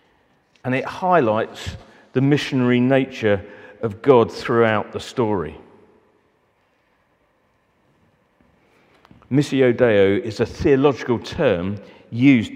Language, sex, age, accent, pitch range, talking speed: English, male, 40-59, British, 115-140 Hz, 85 wpm